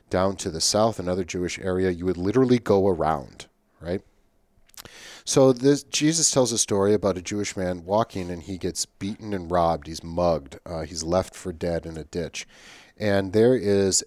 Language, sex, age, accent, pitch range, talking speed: English, male, 40-59, American, 85-100 Hz, 185 wpm